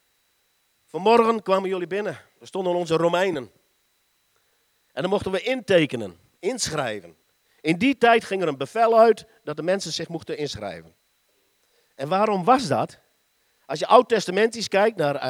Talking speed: 145 wpm